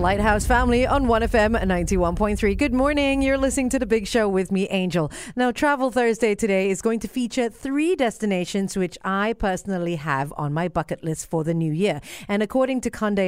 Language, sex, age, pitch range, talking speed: English, female, 30-49, 175-235 Hz, 190 wpm